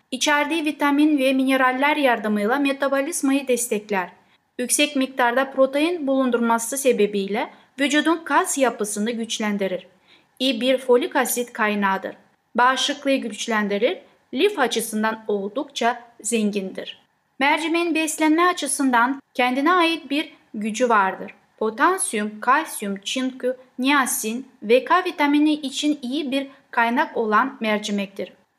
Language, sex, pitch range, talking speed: Turkish, female, 220-285 Hz, 100 wpm